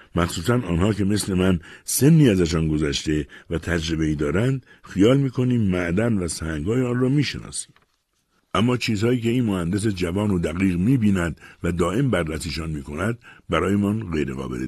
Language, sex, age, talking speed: Persian, male, 60-79, 145 wpm